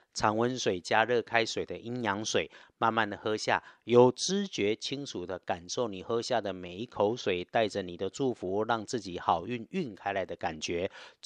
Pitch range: 105-130 Hz